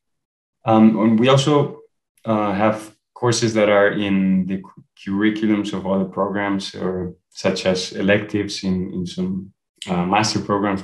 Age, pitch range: 20-39, 95-110 Hz